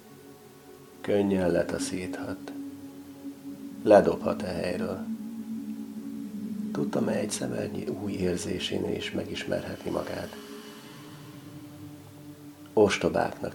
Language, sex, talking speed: Hungarian, male, 60 wpm